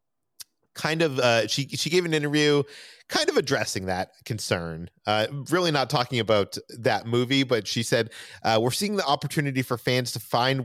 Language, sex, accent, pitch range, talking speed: English, male, American, 105-130 Hz, 180 wpm